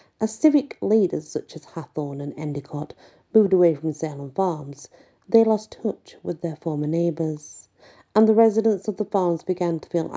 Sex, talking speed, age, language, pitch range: female, 170 wpm, 40-59, English, 150-190 Hz